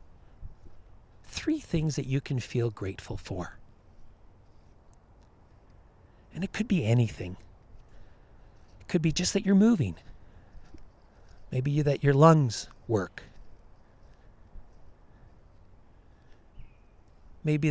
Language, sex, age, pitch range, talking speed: English, male, 40-59, 100-140 Hz, 90 wpm